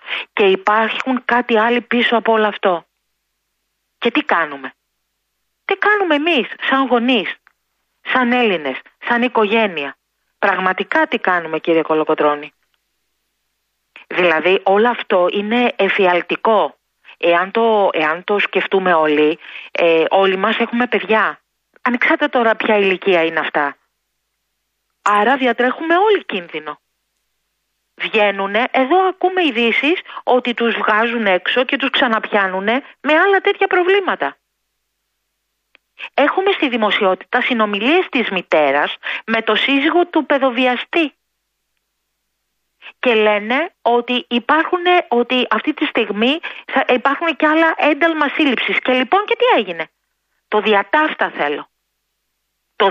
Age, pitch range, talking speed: 40-59, 195-280 Hz, 115 wpm